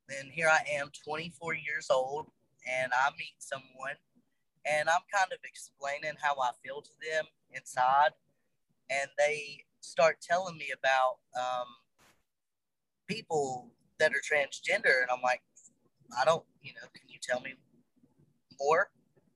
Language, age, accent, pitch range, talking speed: English, 30-49, American, 130-165 Hz, 140 wpm